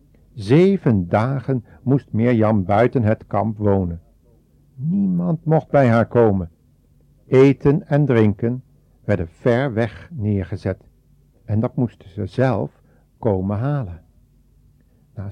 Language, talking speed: Dutch, 110 wpm